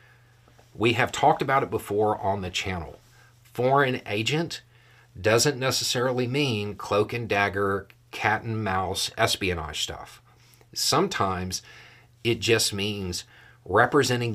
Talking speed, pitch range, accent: 115 wpm, 95-120 Hz, American